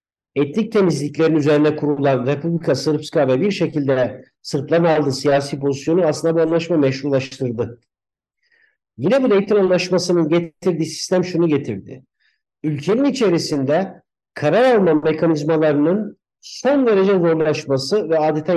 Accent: native